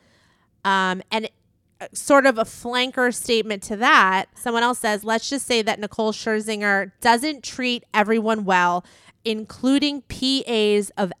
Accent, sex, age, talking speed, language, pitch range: American, female, 30-49, 135 wpm, English, 185-235 Hz